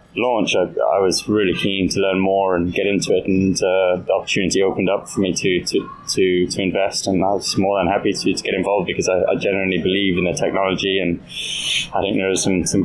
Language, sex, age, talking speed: English, male, 20-39, 240 wpm